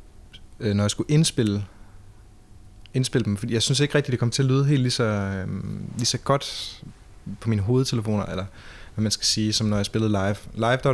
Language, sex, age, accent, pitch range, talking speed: Danish, male, 20-39, native, 100-115 Hz, 215 wpm